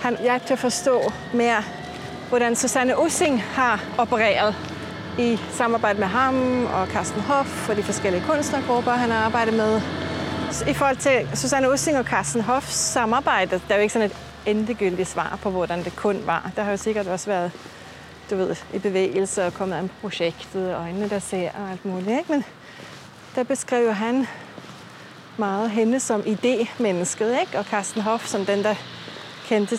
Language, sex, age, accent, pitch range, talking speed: Danish, female, 30-49, native, 200-245 Hz, 175 wpm